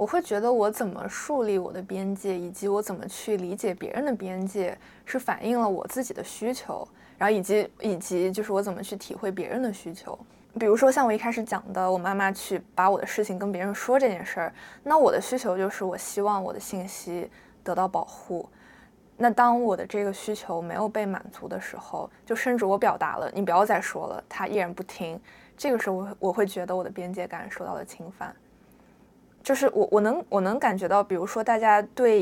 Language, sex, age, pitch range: Chinese, female, 20-39, 185-240 Hz